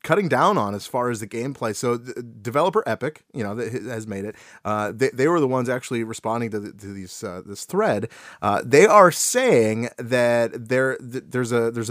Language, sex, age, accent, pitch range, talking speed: English, male, 30-49, American, 115-180 Hz, 215 wpm